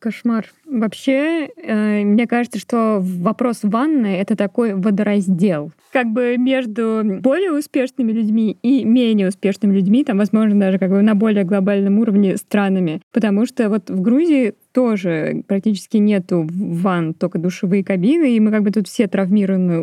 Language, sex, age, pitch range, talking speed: Russian, female, 20-39, 195-230 Hz, 155 wpm